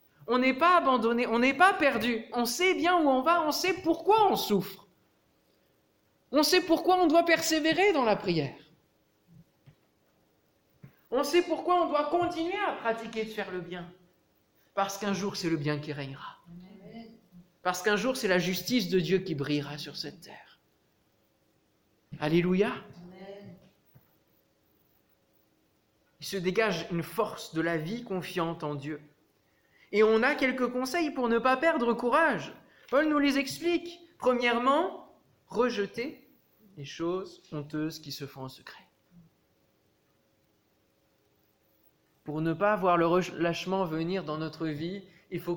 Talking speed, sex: 145 wpm, male